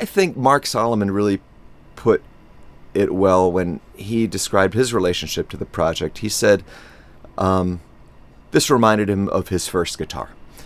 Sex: male